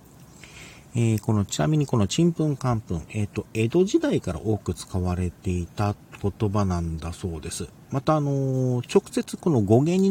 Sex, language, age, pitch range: male, Japanese, 40-59, 90-135 Hz